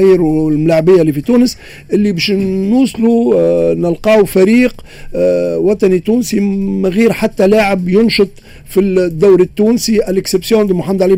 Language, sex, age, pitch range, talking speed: Arabic, male, 50-69, 180-215 Hz, 140 wpm